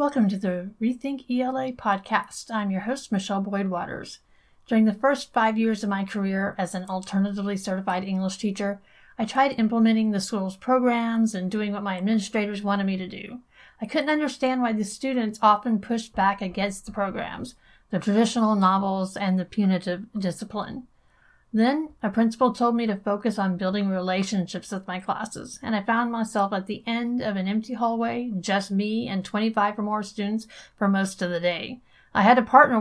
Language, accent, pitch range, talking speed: English, American, 195-230 Hz, 180 wpm